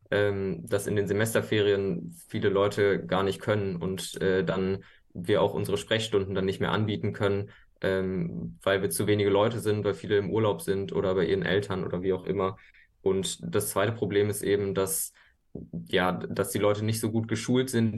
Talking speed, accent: 180 wpm, German